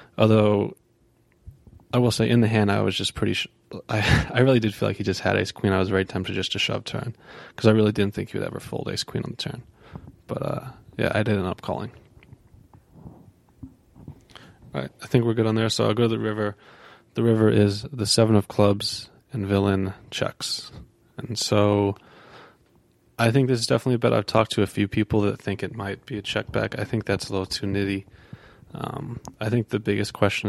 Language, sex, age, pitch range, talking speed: English, male, 20-39, 100-115 Hz, 220 wpm